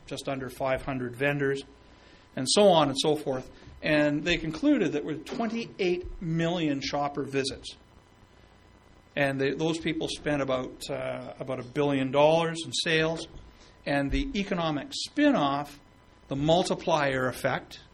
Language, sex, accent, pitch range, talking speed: English, male, American, 135-165 Hz, 130 wpm